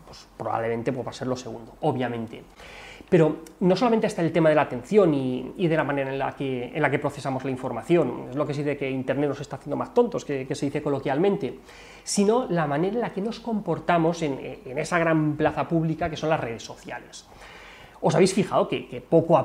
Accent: Spanish